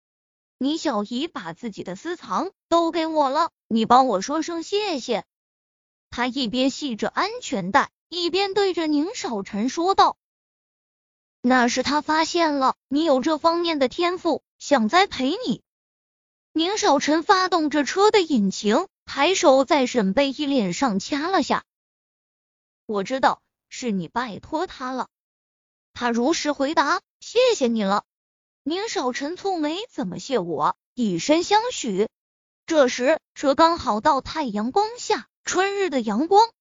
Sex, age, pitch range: female, 20-39, 250-355 Hz